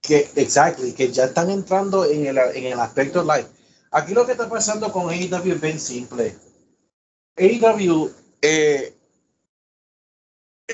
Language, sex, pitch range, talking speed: Spanish, male, 130-175 Hz, 135 wpm